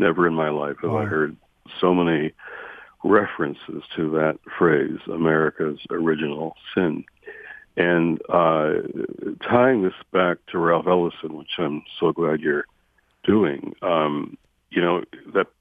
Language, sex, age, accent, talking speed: English, male, 60-79, American, 130 wpm